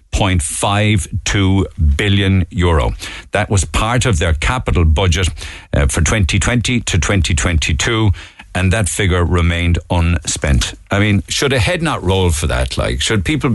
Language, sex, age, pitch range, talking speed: English, male, 60-79, 80-100 Hz, 140 wpm